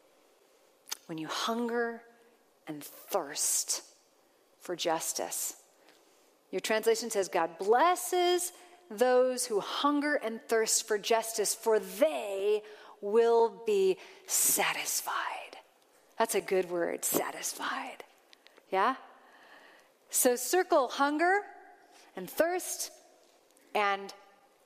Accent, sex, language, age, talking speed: American, female, English, 40-59, 90 wpm